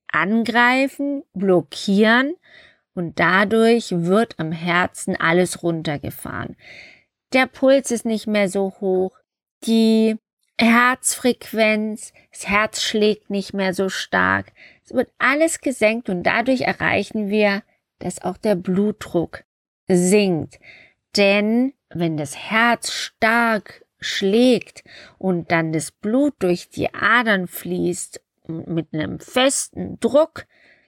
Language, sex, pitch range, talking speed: German, female, 180-240 Hz, 110 wpm